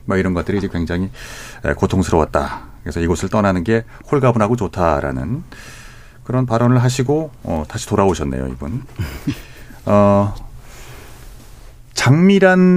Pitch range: 90-130 Hz